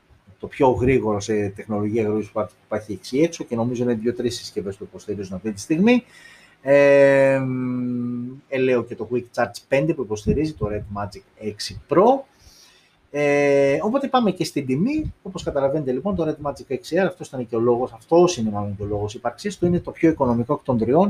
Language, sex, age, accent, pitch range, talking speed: Greek, male, 30-49, native, 105-135 Hz, 190 wpm